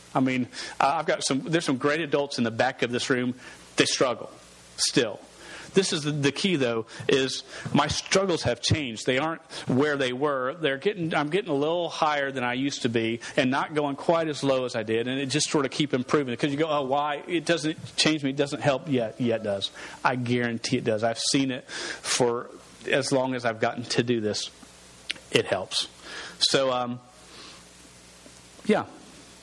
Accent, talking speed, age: American, 200 wpm, 40-59